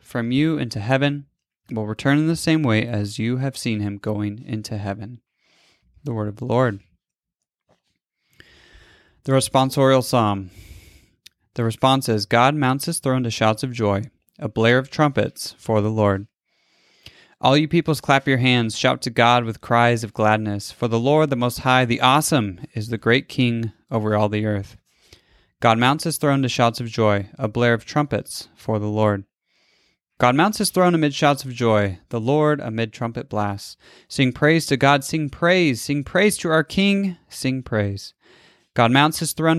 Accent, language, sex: American, English, male